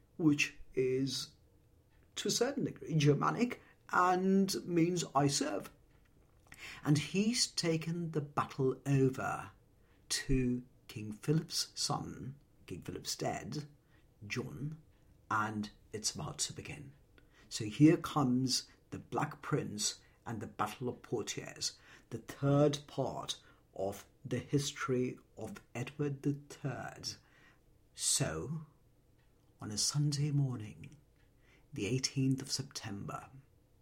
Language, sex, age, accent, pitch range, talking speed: English, male, 50-69, British, 120-155 Hz, 105 wpm